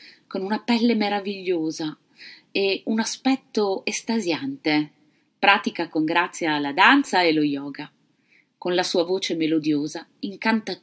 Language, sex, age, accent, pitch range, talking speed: Italian, female, 30-49, native, 165-260 Hz, 120 wpm